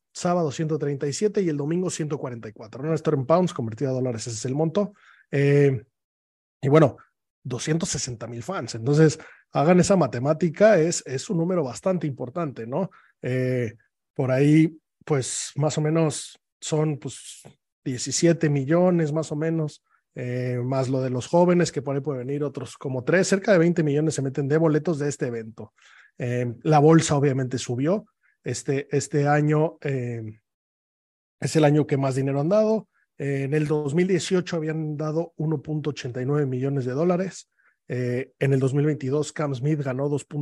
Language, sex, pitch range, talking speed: Spanish, male, 130-160 Hz, 160 wpm